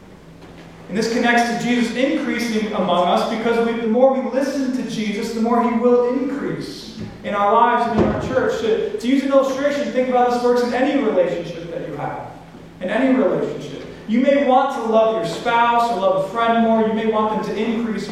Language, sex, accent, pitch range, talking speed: English, male, American, 170-225 Hz, 215 wpm